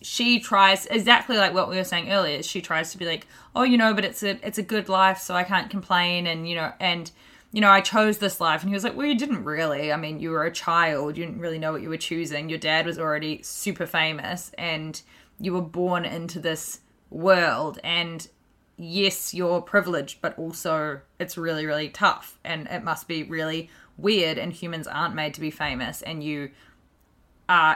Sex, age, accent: female, 20-39, Australian